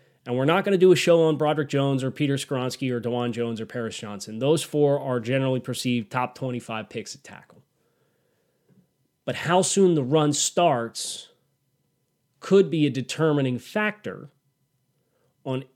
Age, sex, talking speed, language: 30-49, male, 160 wpm, English